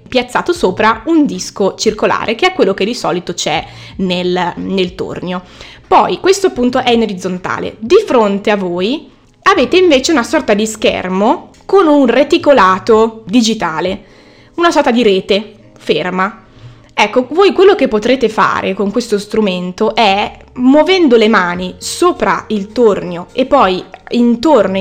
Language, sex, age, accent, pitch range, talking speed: Italian, female, 20-39, native, 190-260 Hz, 140 wpm